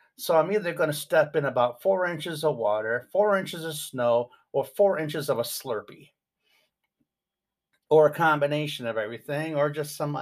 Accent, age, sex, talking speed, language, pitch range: American, 50-69, male, 175 wpm, English, 125-150 Hz